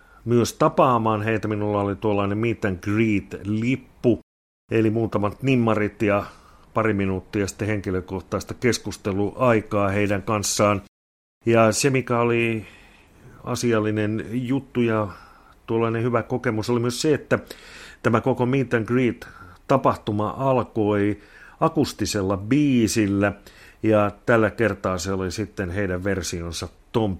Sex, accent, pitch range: male, native, 95-120 Hz